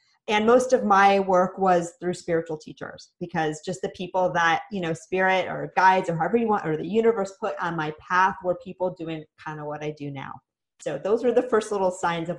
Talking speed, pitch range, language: 230 wpm, 170-225 Hz, English